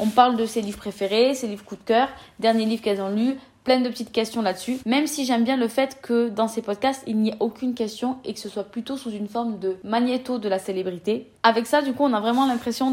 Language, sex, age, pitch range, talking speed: French, female, 20-39, 215-260 Hz, 265 wpm